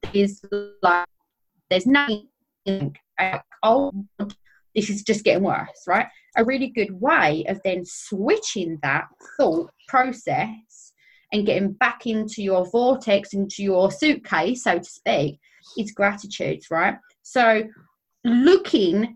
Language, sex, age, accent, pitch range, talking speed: English, female, 20-39, British, 190-230 Hz, 120 wpm